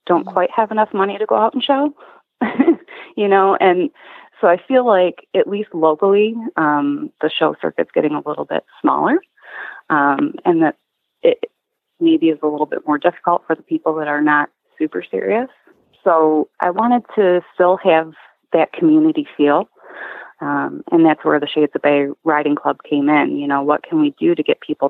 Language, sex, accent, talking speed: English, female, American, 190 wpm